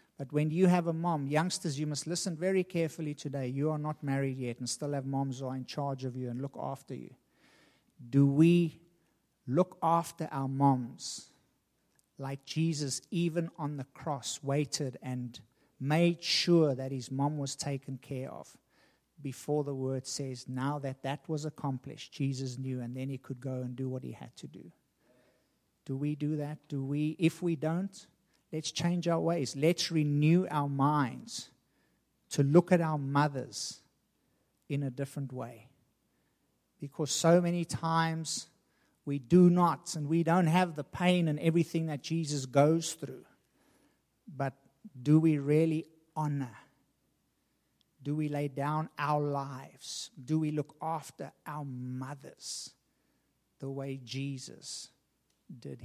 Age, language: 50-69, English